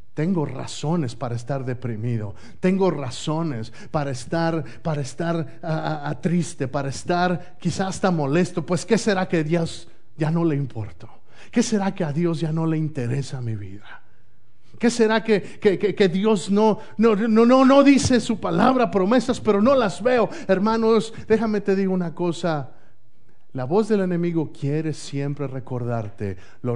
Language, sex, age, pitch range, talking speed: Spanish, male, 50-69, 120-180 Hz, 170 wpm